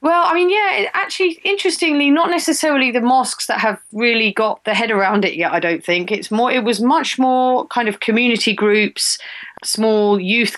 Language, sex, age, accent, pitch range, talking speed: English, female, 40-59, British, 175-210 Hz, 195 wpm